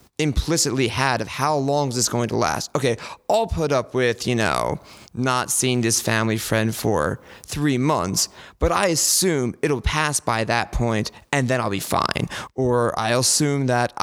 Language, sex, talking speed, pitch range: English, male, 180 wpm, 115-140 Hz